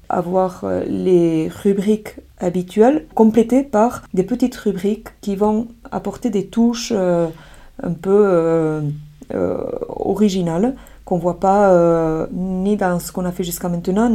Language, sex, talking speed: French, female, 140 wpm